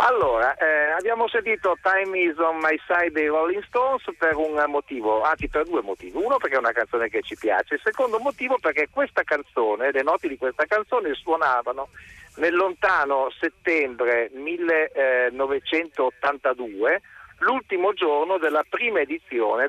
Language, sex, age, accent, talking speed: Italian, male, 50-69, native, 145 wpm